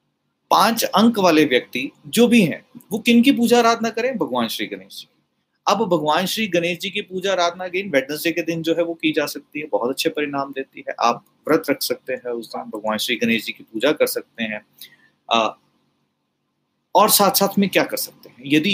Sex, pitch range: male, 135-195 Hz